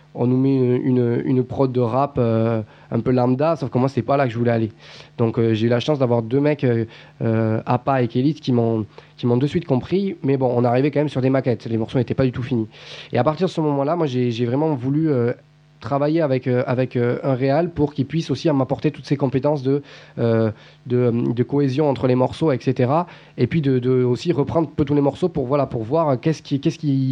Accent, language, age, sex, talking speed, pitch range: French, French, 20-39, male, 250 wpm, 120-145 Hz